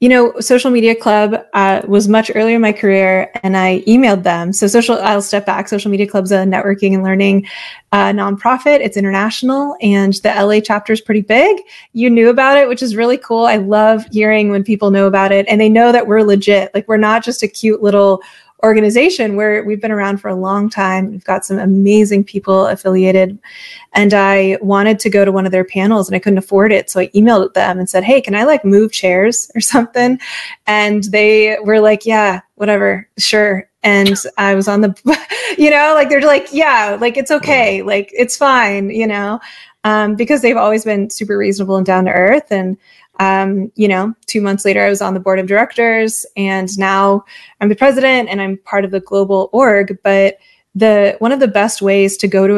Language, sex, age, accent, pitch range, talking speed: English, female, 20-39, American, 195-230 Hz, 210 wpm